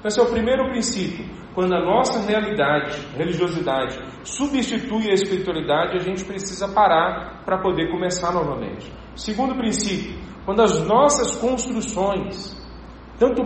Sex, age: male, 40-59